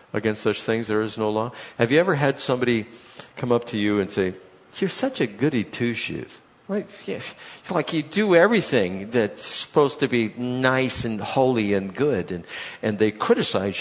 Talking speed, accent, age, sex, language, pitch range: 175 wpm, American, 50-69, male, English, 100-130 Hz